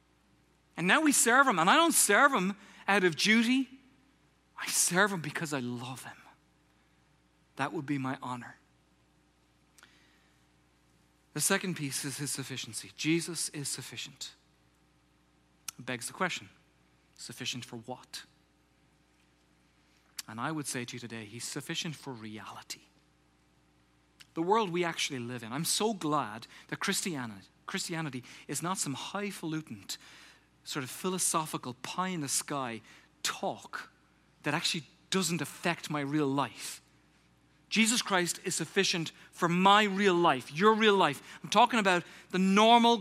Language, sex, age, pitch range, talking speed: English, male, 40-59, 120-195 Hz, 135 wpm